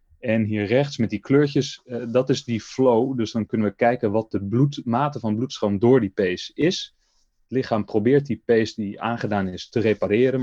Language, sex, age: Dutch, male, 30-49